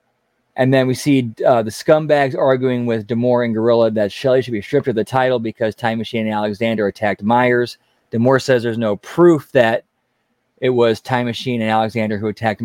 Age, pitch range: 20-39, 110-130 Hz